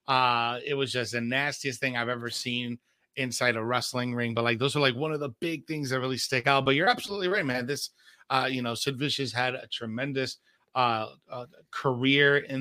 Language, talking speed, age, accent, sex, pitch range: English, 220 wpm, 30-49, American, male, 125-155 Hz